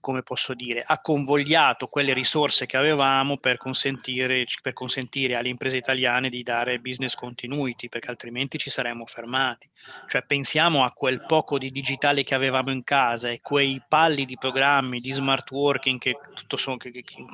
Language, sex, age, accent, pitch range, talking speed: Italian, male, 20-39, native, 125-140 Hz, 175 wpm